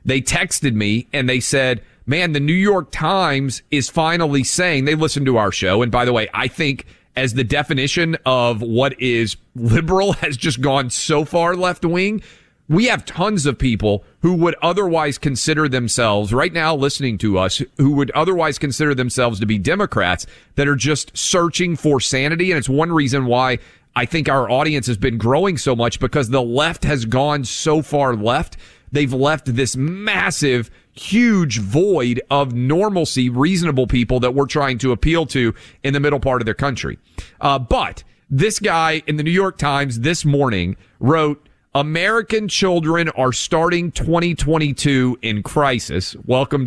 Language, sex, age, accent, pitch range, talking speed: English, male, 30-49, American, 125-160 Hz, 170 wpm